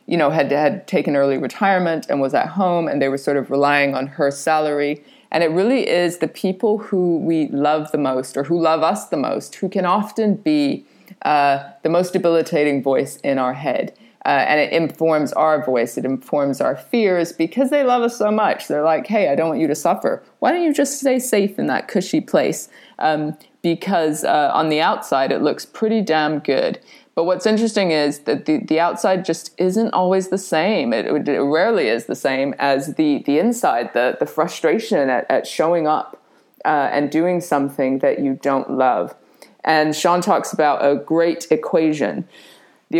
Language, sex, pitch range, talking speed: English, female, 145-195 Hz, 195 wpm